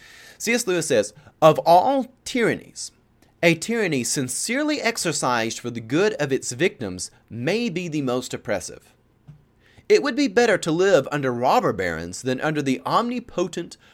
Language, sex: English, male